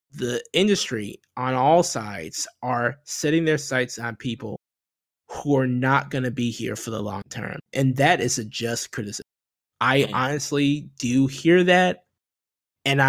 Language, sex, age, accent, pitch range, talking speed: English, male, 20-39, American, 120-145 Hz, 150 wpm